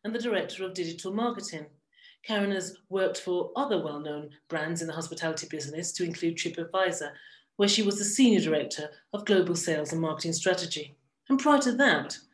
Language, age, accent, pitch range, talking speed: English, 40-59, British, 165-225 Hz, 175 wpm